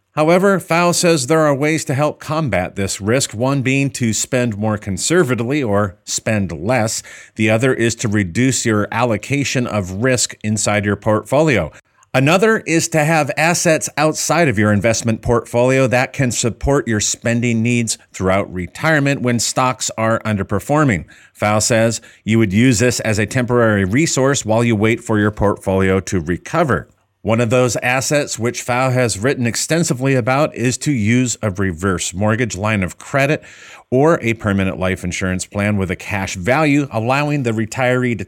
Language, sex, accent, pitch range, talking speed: English, male, American, 105-130 Hz, 165 wpm